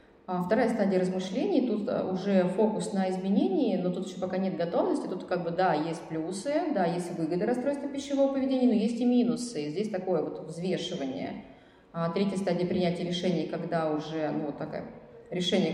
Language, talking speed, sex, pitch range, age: Russian, 170 wpm, female, 170-225 Hz, 20-39